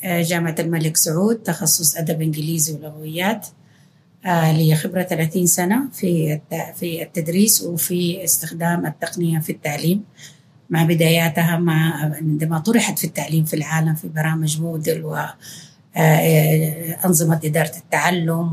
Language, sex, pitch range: Arabic, female, 155-175 Hz